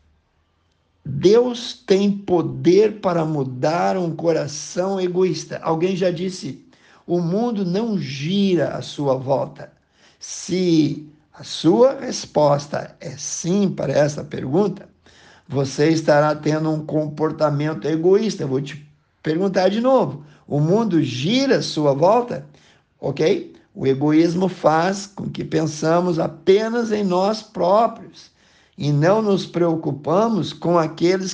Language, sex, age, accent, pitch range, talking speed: Portuguese, male, 60-79, Brazilian, 150-190 Hz, 120 wpm